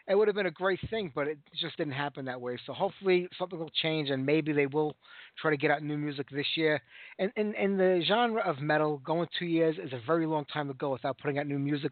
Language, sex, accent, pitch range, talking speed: English, male, American, 140-175 Hz, 265 wpm